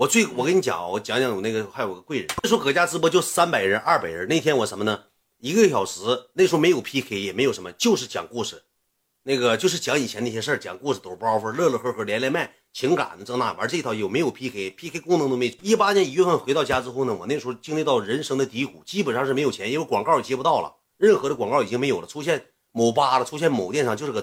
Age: 30-49